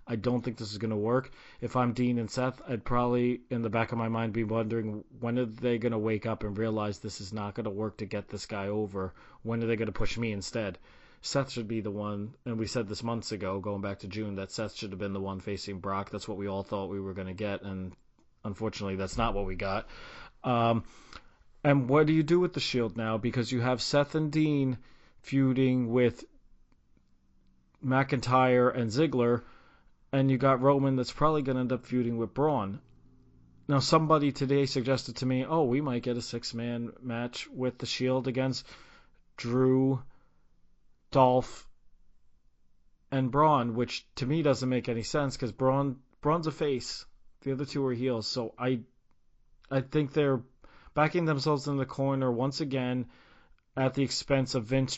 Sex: male